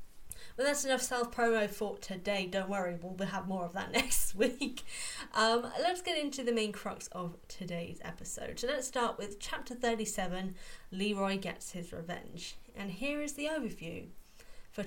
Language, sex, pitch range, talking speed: English, female, 180-245 Hz, 165 wpm